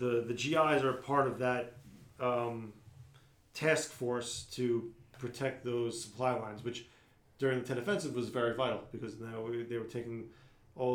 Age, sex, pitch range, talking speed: 40-59, male, 115-135 Hz, 165 wpm